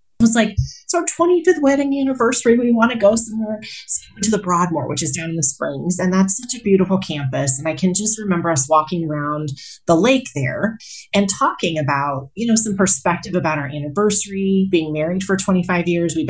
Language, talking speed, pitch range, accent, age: English, 200 wpm, 160-210 Hz, American, 30-49